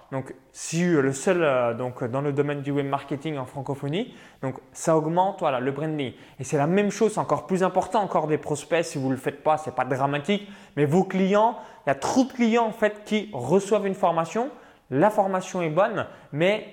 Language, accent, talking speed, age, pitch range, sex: French, French, 220 wpm, 20-39, 145-190 Hz, male